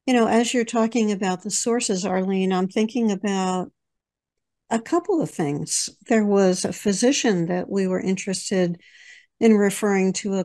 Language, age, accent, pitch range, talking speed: English, 60-79, American, 190-235 Hz, 160 wpm